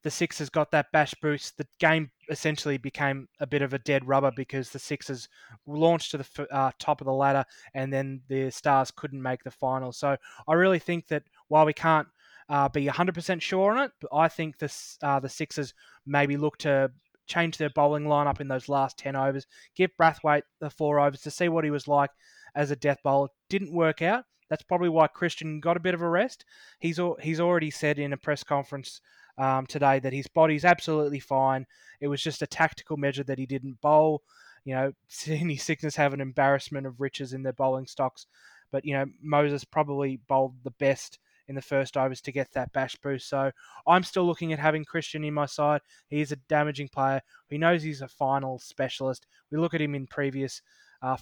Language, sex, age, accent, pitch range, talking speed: English, male, 20-39, Australian, 135-155 Hz, 210 wpm